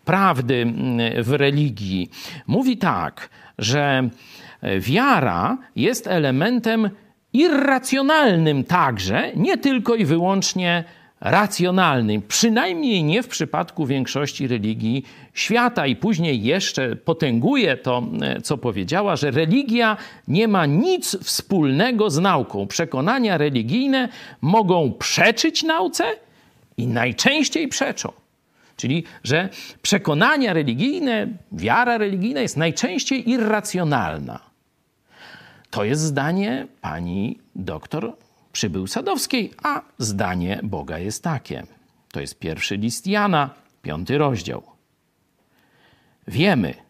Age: 50-69